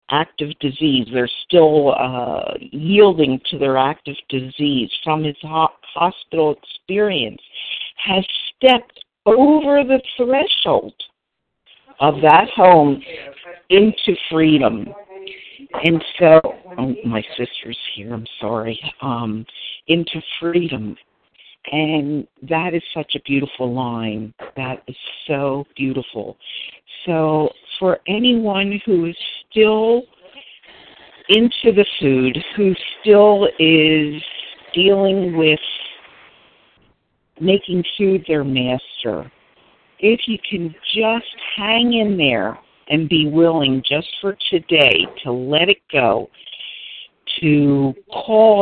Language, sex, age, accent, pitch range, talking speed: English, female, 50-69, American, 140-195 Hz, 100 wpm